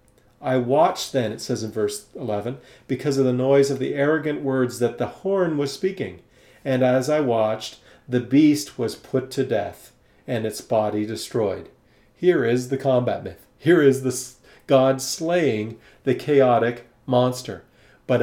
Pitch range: 120-140 Hz